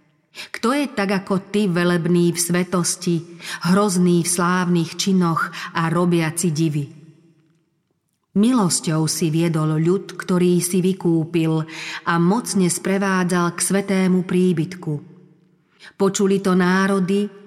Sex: female